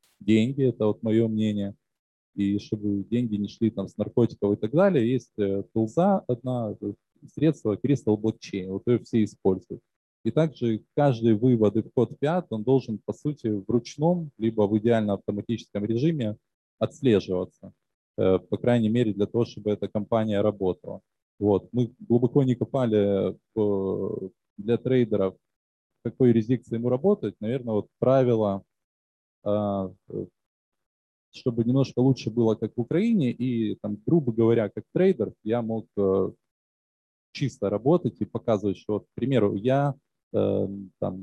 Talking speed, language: 135 wpm, Ukrainian